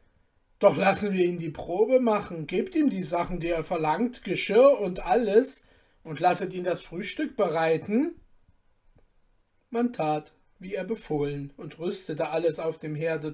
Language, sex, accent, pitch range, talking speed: German, male, German, 155-190 Hz, 155 wpm